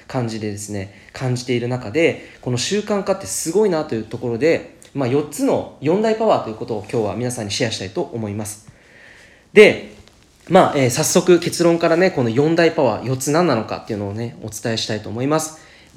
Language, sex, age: Japanese, male, 20-39